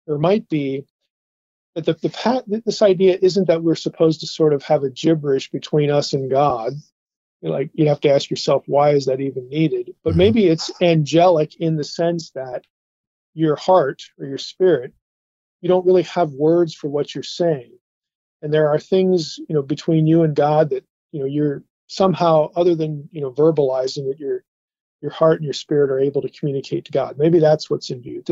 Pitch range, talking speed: 145-175 Hz, 195 wpm